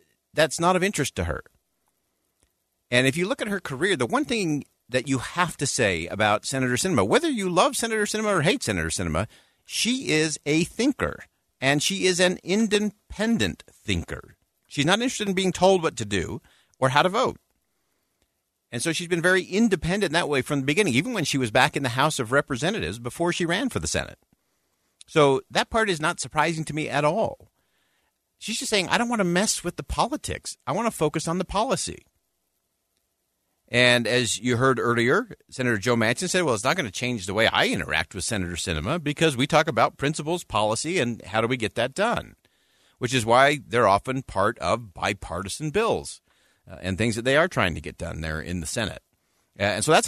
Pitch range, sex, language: 110-175 Hz, male, English